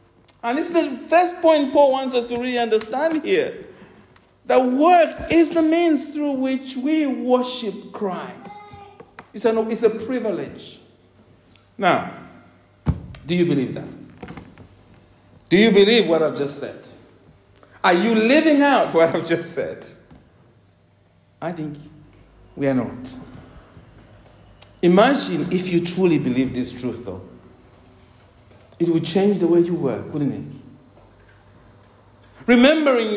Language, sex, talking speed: English, male, 130 wpm